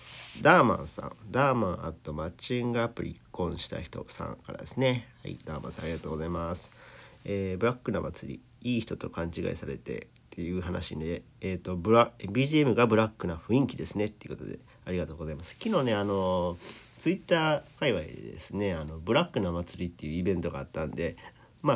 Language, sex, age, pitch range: Japanese, male, 40-59, 85-120 Hz